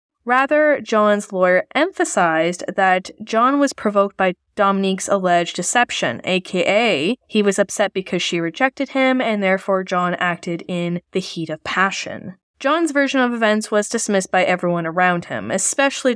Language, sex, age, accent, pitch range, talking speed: English, female, 10-29, American, 180-225 Hz, 150 wpm